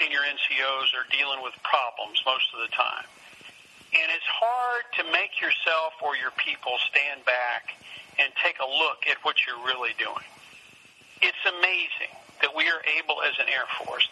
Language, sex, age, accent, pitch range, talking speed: English, male, 50-69, American, 130-145 Hz, 170 wpm